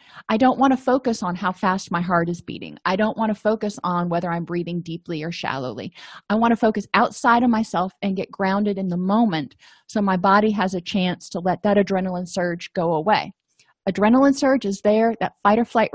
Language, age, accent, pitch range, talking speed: English, 30-49, American, 185-230 Hz, 210 wpm